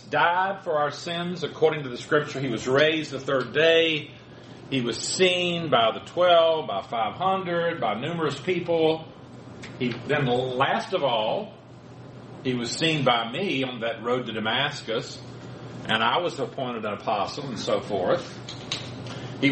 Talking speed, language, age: 155 wpm, English, 40-59